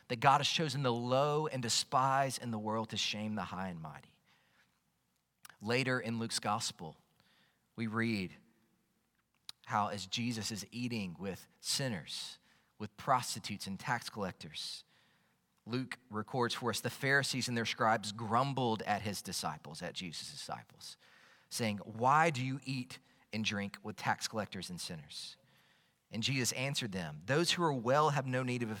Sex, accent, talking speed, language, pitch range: male, American, 160 wpm, English, 105-135 Hz